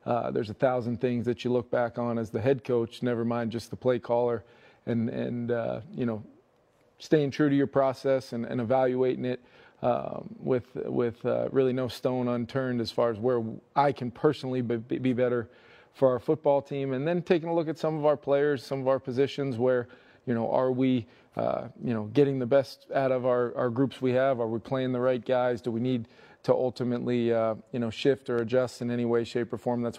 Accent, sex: American, male